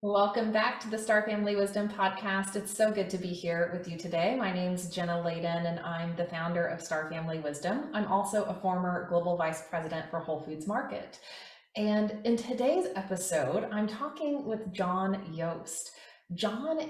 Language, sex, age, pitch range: English, female, 30-49, 170-205 Hz